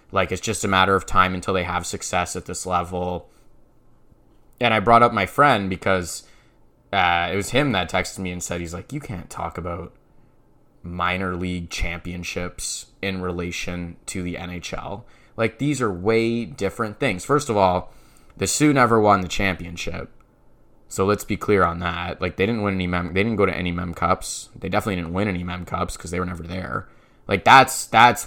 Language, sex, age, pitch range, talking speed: English, male, 20-39, 90-105 Hz, 195 wpm